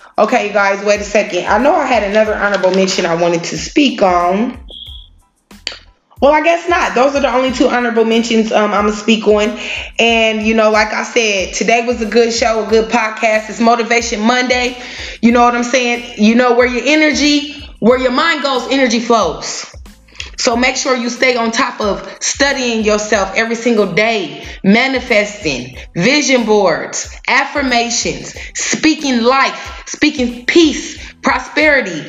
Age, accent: 20-39, American